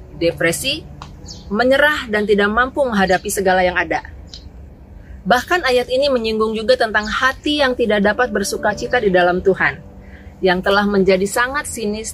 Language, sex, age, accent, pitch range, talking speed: Indonesian, female, 30-49, native, 175-240 Hz, 145 wpm